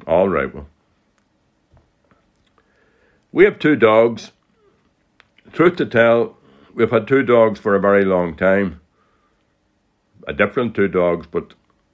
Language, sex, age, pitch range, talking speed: English, male, 60-79, 95-115 Hz, 120 wpm